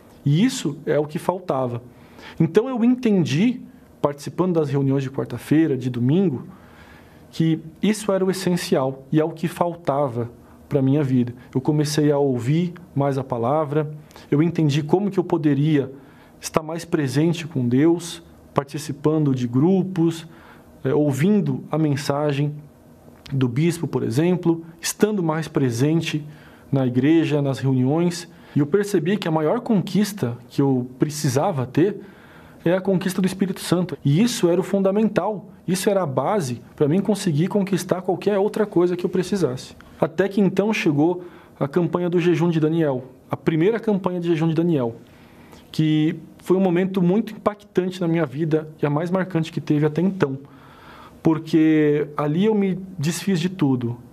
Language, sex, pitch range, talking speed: Portuguese, male, 145-180 Hz, 155 wpm